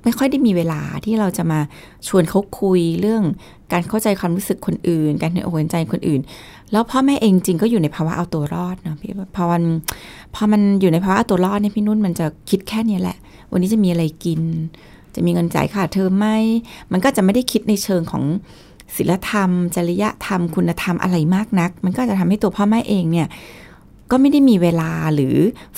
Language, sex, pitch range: Thai, female, 165-215 Hz